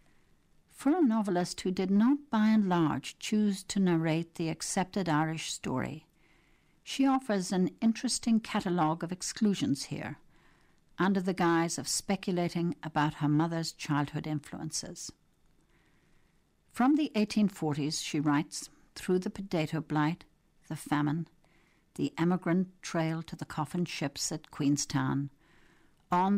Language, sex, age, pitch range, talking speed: English, female, 60-79, 150-185 Hz, 125 wpm